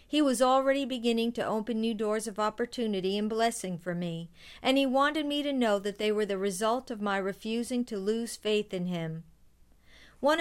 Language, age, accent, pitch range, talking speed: English, 50-69, American, 195-245 Hz, 195 wpm